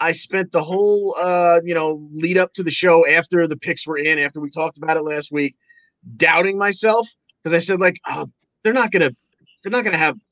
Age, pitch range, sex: 30-49, 140-180 Hz, male